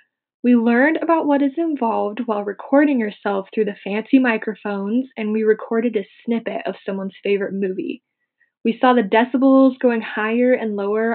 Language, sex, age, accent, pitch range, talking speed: English, female, 10-29, American, 220-270 Hz, 160 wpm